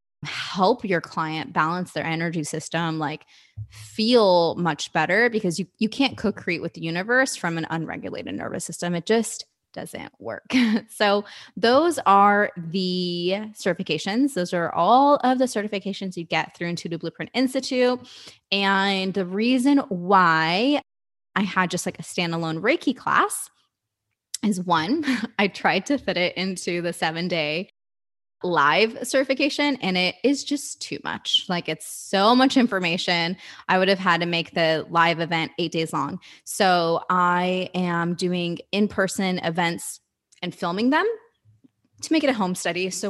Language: English